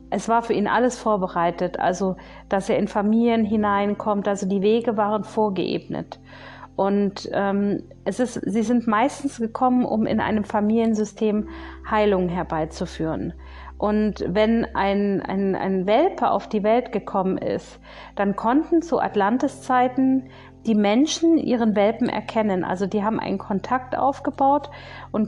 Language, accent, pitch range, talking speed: German, German, 200-235 Hz, 140 wpm